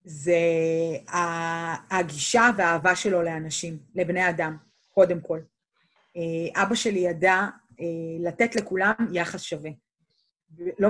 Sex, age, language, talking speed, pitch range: female, 30-49, Hebrew, 95 wpm, 170-200 Hz